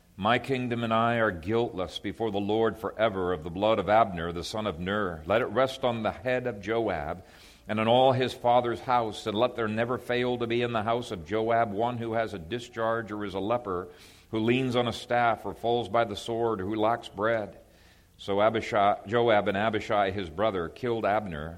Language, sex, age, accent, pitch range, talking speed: English, male, 50-69, American, 95-115 Hz, 215 wpm